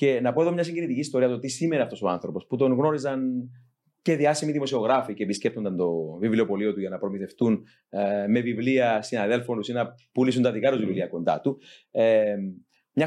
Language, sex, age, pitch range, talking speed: Greek, male, 30-49, 110-150 Hz, 185 wpm